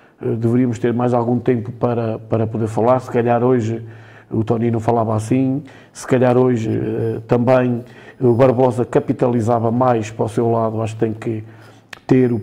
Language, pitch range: Portuguese, 115-130 Hz